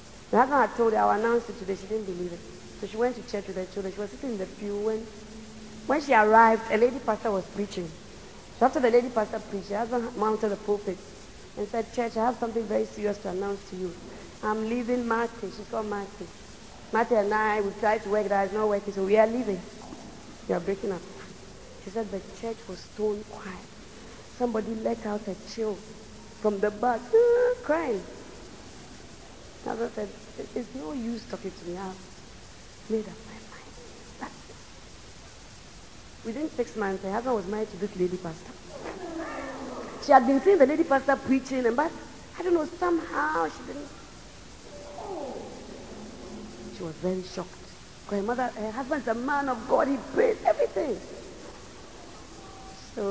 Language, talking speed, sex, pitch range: English, 175 wpm, female, 200-240 Hz